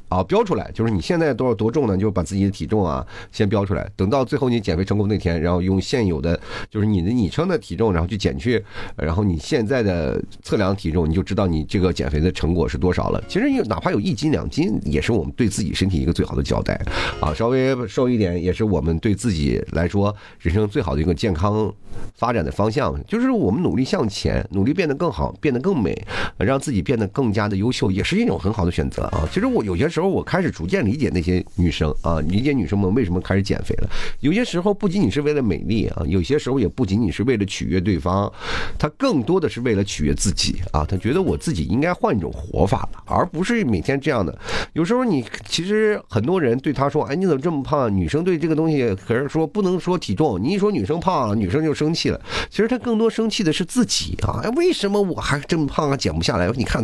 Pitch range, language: 95-150 Hz, Chinese